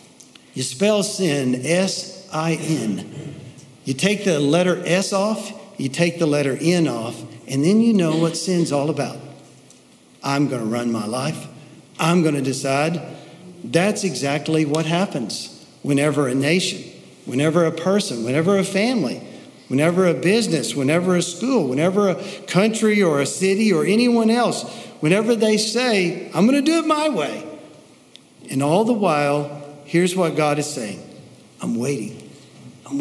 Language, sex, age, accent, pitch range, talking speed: English, male, 50-69, American, 145-195 Hz, 145 wpm